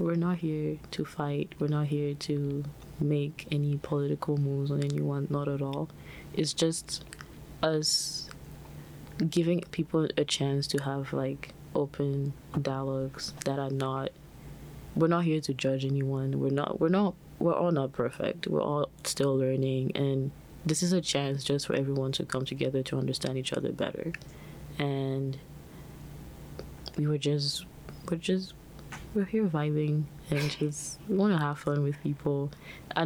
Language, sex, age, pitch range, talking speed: English, female, 20-39, 135-155 Hz, 155 wpm